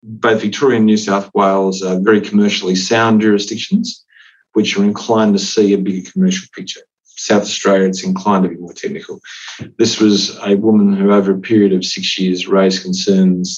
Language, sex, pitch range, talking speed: English, male, 95-120 Hz, 180 wpm